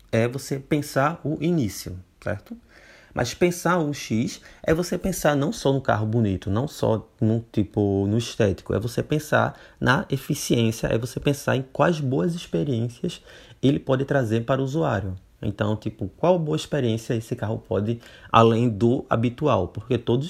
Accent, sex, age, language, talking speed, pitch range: Brazilian, male, 20-39, Portuguese, 165 wpm, 105-130 Hz